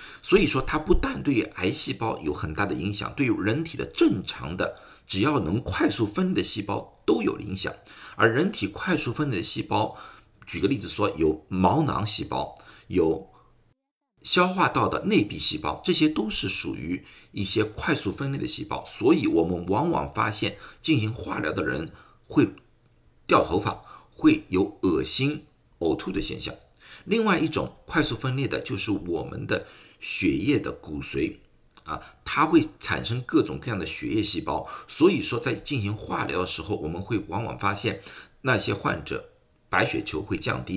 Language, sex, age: Chinese, male, 50-69